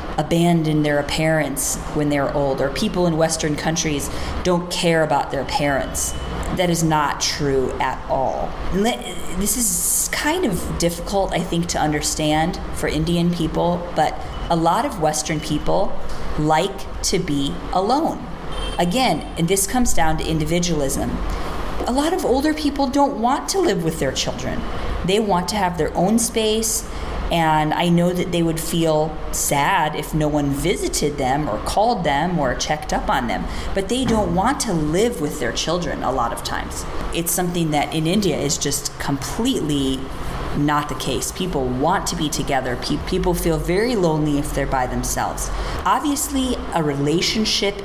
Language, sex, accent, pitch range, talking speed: English, female, American, 145-185 Hz, 165 wpm